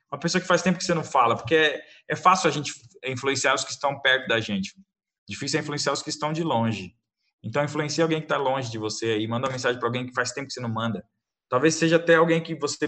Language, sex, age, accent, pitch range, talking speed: Portuguese, male, 20-39, Brazilian, 120-150 Hz, 265 wpm